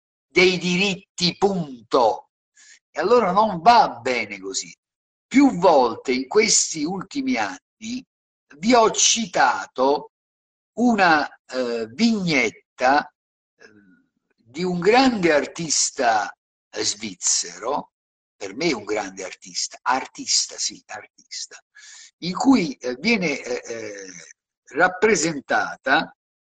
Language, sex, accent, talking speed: Italian, male, native, 95 wpm